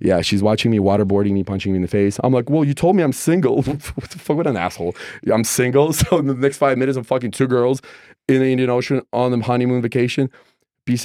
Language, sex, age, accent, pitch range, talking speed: English, male, 20-39, Canadian, 85-110 Hz, 250 wpm